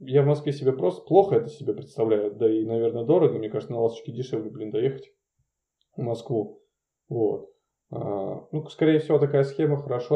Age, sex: 20-39, male